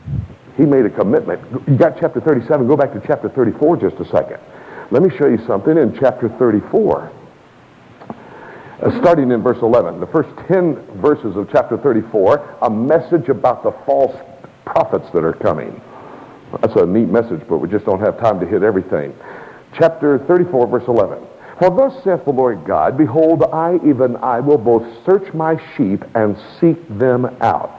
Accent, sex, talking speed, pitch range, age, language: American, male, 175 wpm, 130-200 Hz, 60-79, English